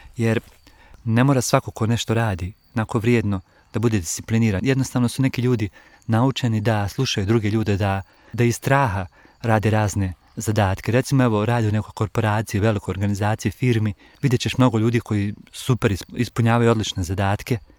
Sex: male